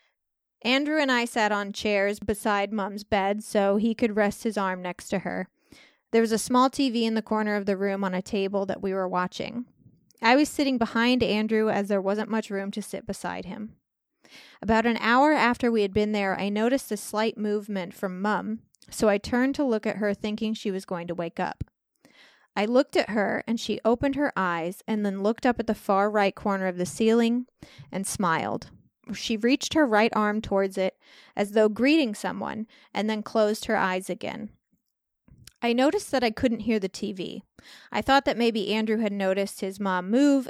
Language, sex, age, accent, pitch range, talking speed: English, female, 20-39, American, 200-235 Hz, 205 wpm